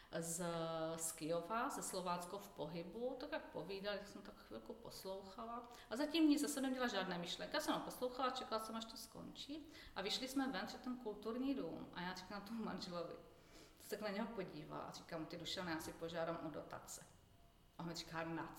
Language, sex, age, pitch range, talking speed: Czech, female, 40-59, 170-235 Hz, 205 wpm